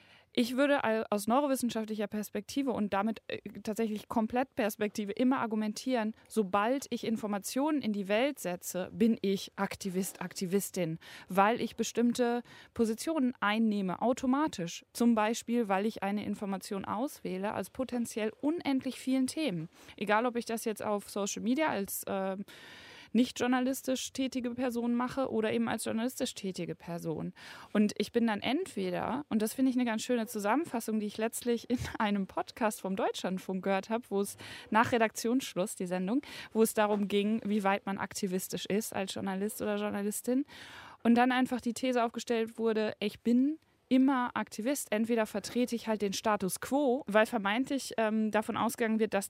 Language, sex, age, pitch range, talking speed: German, female, 20-39, 205-245 Hz, 155 wpm